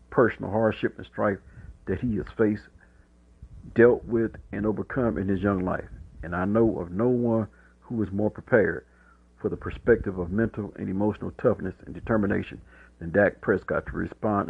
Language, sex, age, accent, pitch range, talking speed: English, male, 50-69, American, 90-115 Hz, 170 wpm